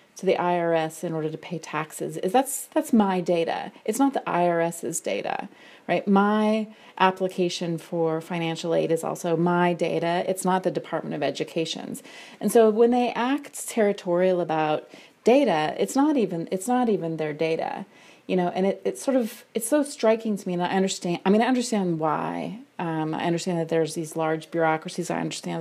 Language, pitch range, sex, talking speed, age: English, 165-220 Hz, female, 185 wpm, 30-49